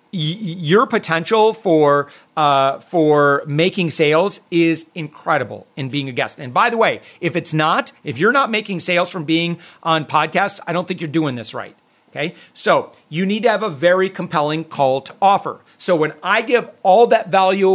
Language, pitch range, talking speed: English, 155-195 Hz, 185 wpm